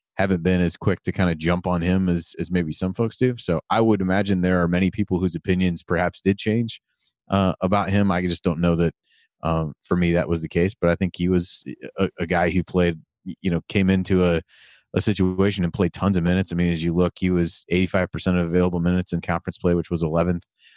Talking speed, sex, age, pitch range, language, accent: 240 wpm, male, 30-49, 85-95 Hz, English, American